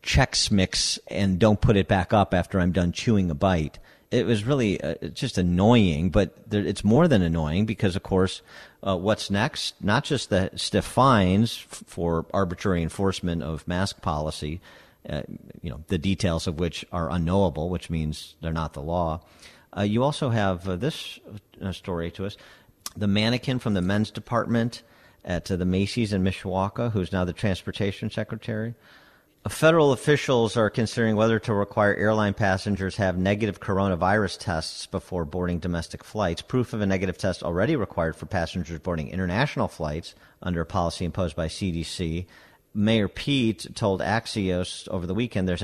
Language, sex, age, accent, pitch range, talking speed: English, male, 50-69, American, 90-110 Hz, 170 wpm